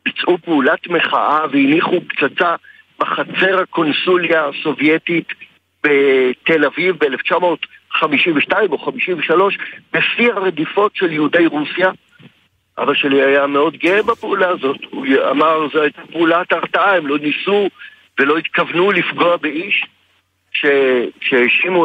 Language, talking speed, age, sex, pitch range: Hebrew, 105 wpm, 60-79, male, 150-210 Hz